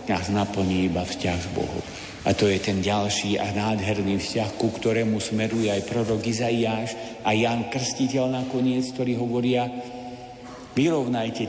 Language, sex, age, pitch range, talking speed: Slovak, male, 60-79, 100-115 Hz, 140 wpm